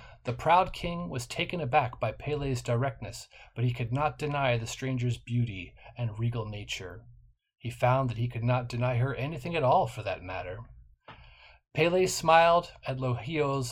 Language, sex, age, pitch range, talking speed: English, male, 40-59, 120-145 Hz, 165 wpm